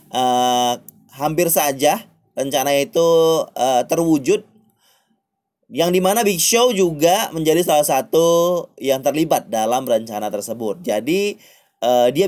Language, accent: Indonesian, native